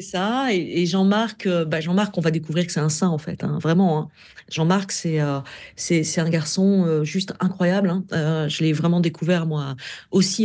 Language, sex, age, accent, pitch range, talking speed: French, female, 40-59, French, 155-185 Hz, 215 wpm